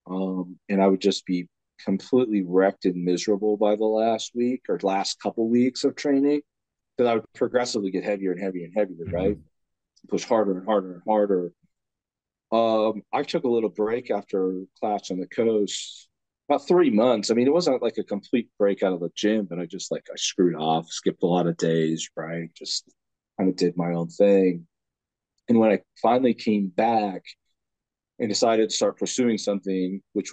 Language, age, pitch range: English, 40-59, 95-110 Hz